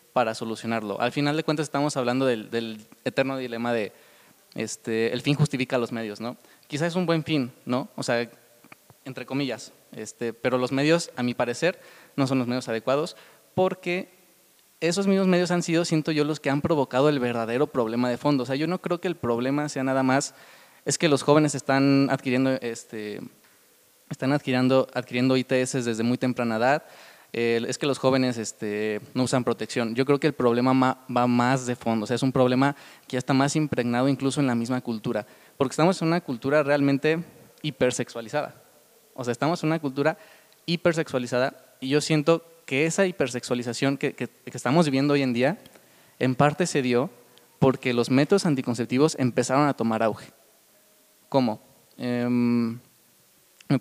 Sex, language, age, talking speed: male, Spanish, 20-39, 180 wpm